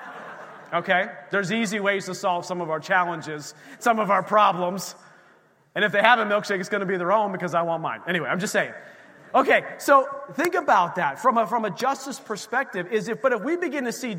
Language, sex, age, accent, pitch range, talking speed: English, male, 30-49, American, 185-245 Hz, 225 wpm